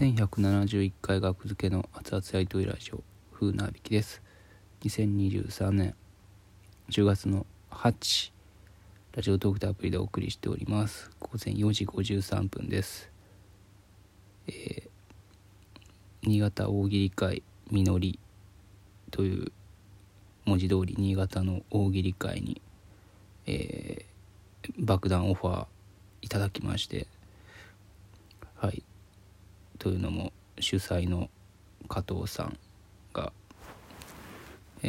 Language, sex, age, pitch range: Japanese, male, 20-39, 95-100 Hz